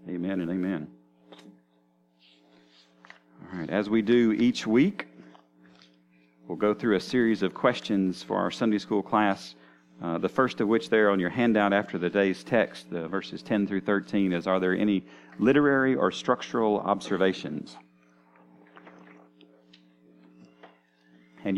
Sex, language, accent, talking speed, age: male, English, American, 135 wpm, 40-59